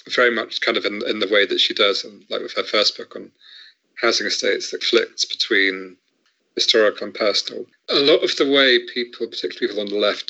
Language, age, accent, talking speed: English, 40-59, British, 210 wpm